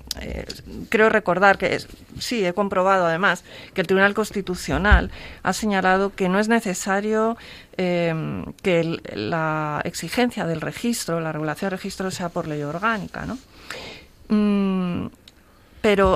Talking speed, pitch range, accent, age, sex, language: 135 wpm, 170-200 Hz, Spanish, 40-59, female, Spanish